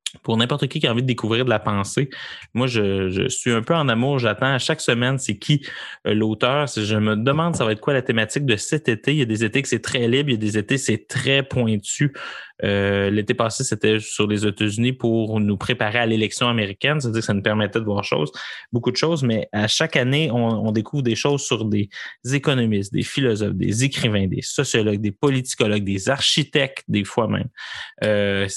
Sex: male